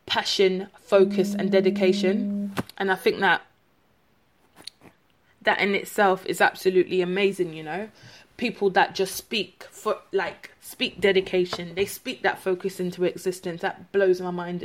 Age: 20-39